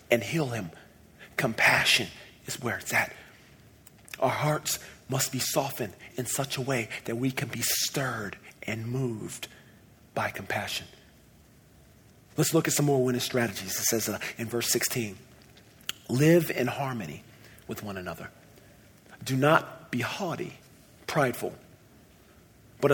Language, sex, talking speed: English, male, 135 wpm